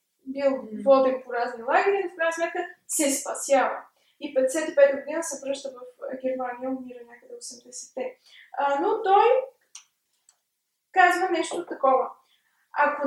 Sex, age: female, 20-39